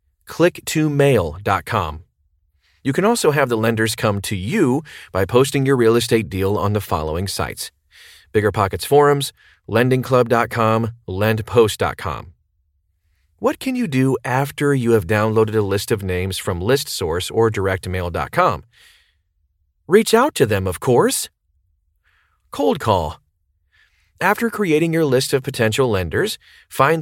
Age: 30-49